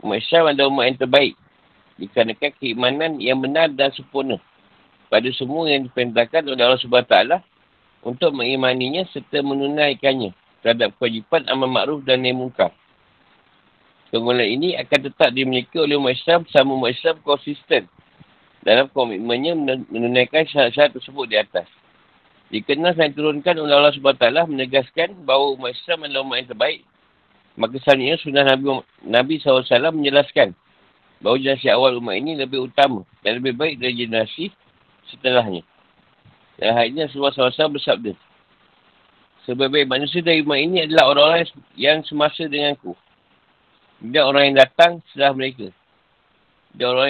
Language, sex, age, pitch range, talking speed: Malay, male, 50-69, 125-145 Hz, 135 wpm